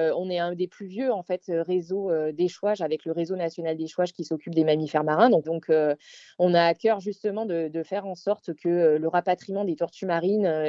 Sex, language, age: female, French, 20-39